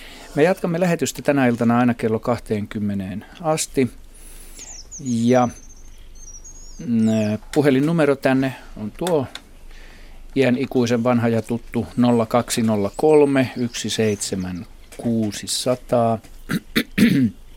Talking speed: 70 wpm